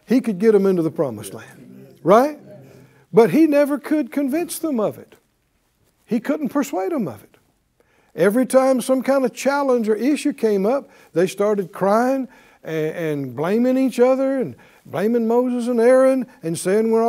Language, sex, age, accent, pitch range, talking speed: English, male, 60-79, American, 170-260 Hz, 170 wpm